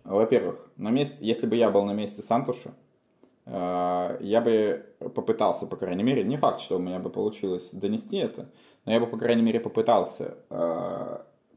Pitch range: 95-110 Hz